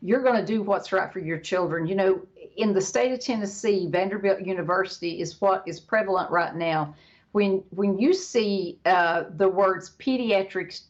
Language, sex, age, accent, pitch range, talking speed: English, female, 50-69, American, 180-225 Hz, 170 wpm